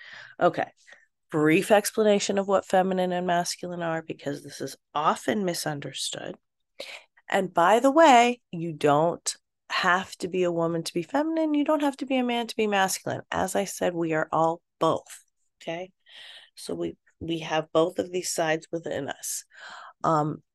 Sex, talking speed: female, 165 wpm